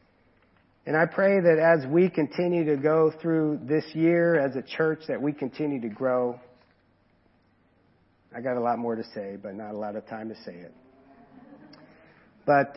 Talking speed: 175 wpm